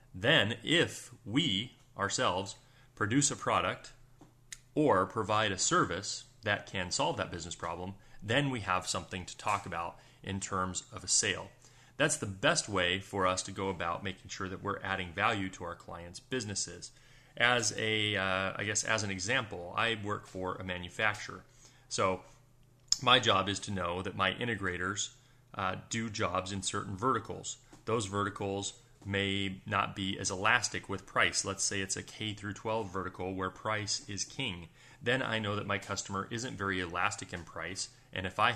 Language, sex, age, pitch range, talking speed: English, male, 30-49, 95-120 Hz, 175 wpm